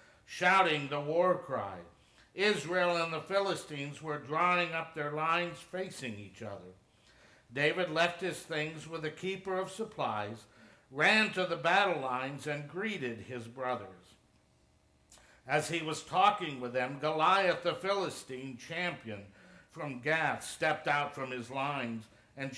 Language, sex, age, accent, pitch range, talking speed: English, male, 60-79, American, 130-175 Hz, 140 wpm